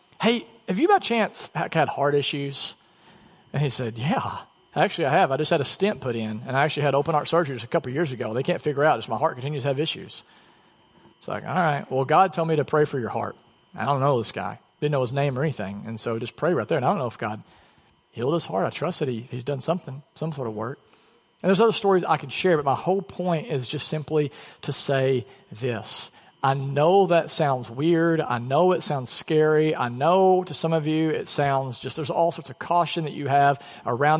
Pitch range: 135-165 Hz